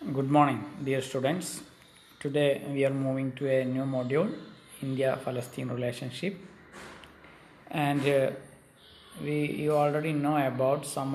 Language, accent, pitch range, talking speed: Malayalam, native, 130-155 Hz, 125 wpm